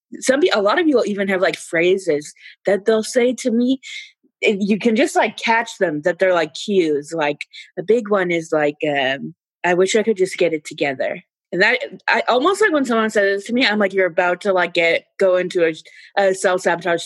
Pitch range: 165-215 Hz